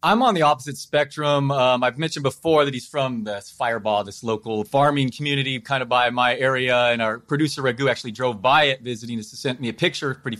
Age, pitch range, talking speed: 30-49, 115-150 Hz, 225 wpm